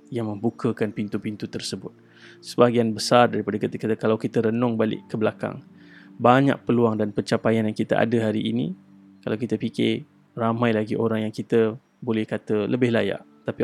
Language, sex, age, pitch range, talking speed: Malay, male, 20-39, 100-130 Hz, 165 wpm